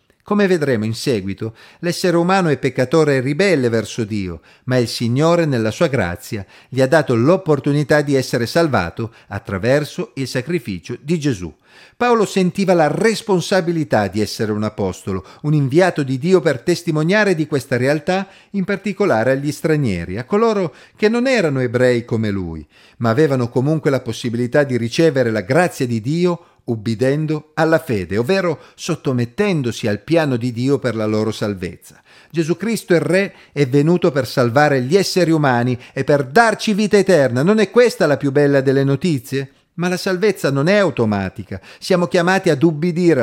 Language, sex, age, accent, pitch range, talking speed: Italian, male, 50-69, native, 115-170 Hz, 160 wpm